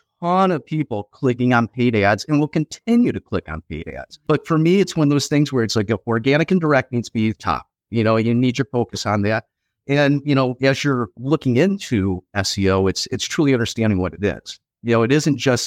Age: 50-69